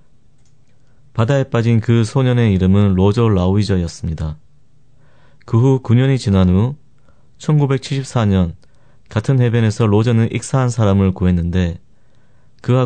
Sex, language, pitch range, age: male, Korean, 100-125 Hz, 30-49